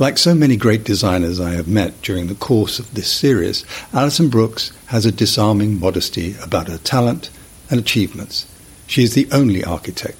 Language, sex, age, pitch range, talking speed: English, male, 60-79, 95-120 Hz, 175 wpm